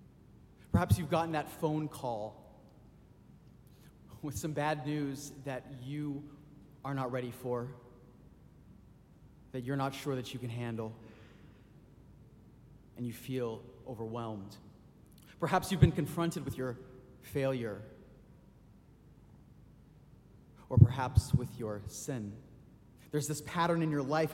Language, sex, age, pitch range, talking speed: English, male, 30-49, 125-155 Hz, 115 wpm